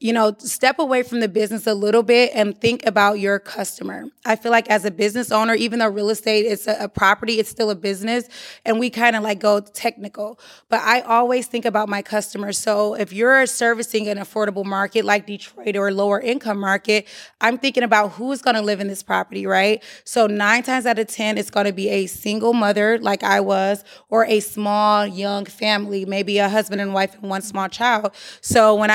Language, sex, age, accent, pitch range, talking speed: English, female, 20-39, American, 205-225 Hz, 205 wpm